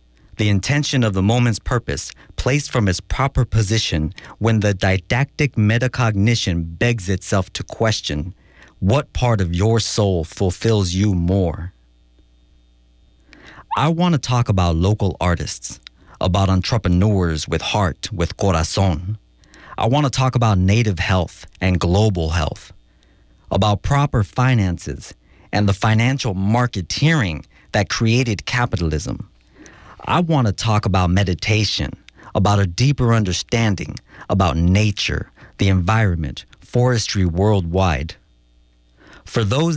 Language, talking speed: English, 120 wpm